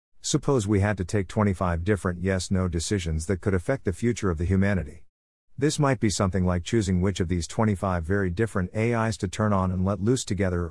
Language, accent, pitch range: English, American, 90-115 Hz